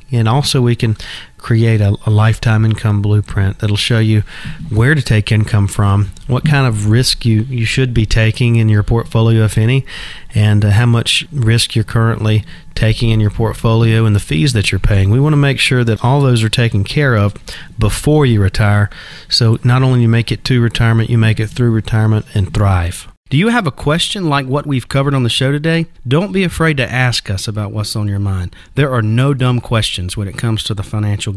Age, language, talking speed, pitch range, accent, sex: 40-59, English, 220 wpm, 105-140 Hz, American, male